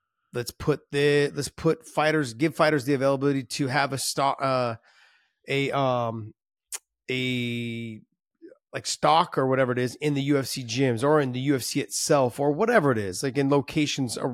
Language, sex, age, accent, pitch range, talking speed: English, male, 30-49, American, 125-155 Hz, 185 wpm